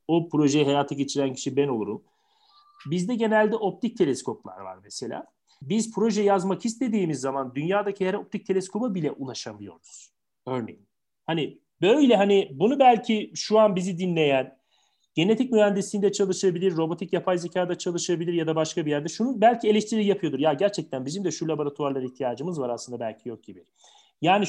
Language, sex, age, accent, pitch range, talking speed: Turkish, male, 40-59, native, 140-210 Hz, 155 wpm